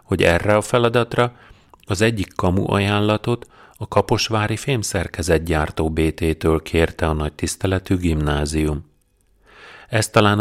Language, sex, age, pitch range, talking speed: Hungarian, male, 40-59, 80-105 Hz, 110 wpm